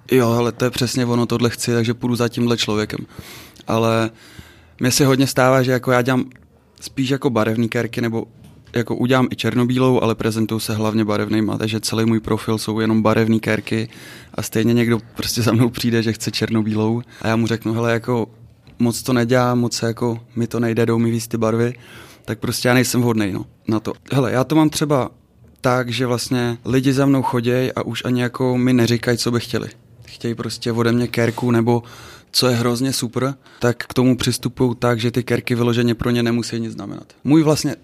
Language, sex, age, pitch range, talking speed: Czech, male, 20-39, 115-125 Hz, 205 wpm